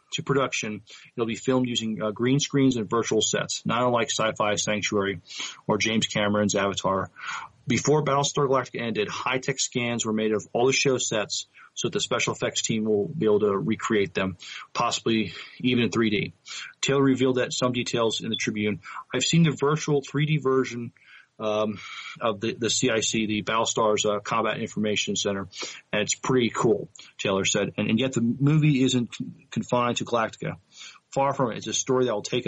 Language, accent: English, American